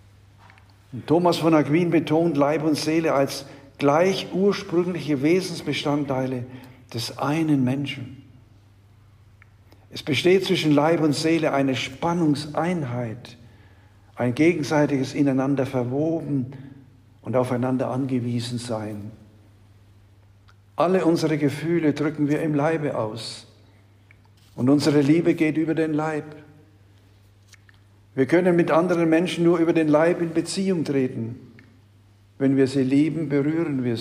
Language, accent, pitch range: German, German, 105-155 Hz